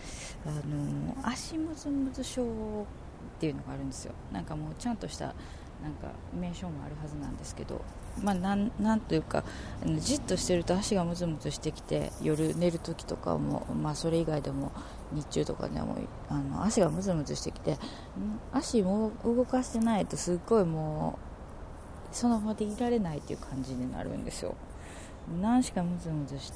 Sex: female